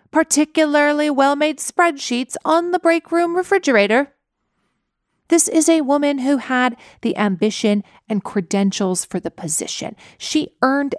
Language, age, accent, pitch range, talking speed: English, 30-49, American, 205-275 Hz, 125 wpm